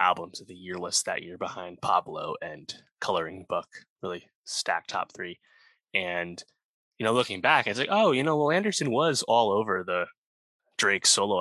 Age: 20-39